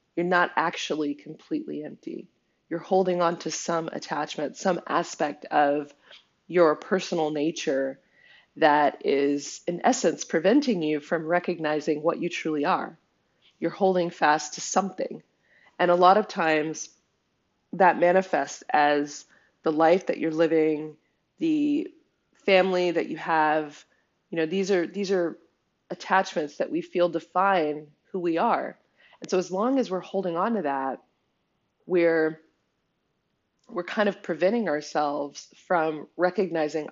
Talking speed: 135 wpm